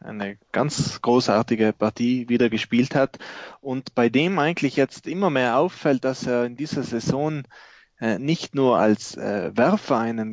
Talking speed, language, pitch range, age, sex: 155 wpm, English, 115-135 Hz, 20-39, male